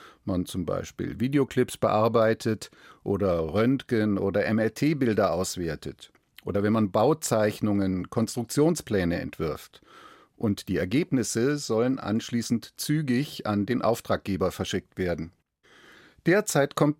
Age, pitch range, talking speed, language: 40-59, 95-130 Hz, 100 wpm, German